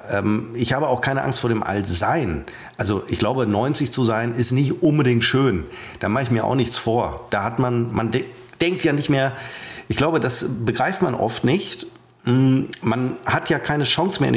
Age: 40-59